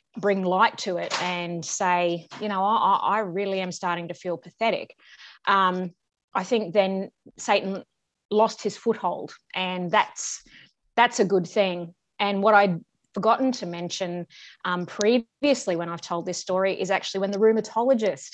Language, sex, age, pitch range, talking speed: English, female, 20-39, 185-230 Hz, 155 wpm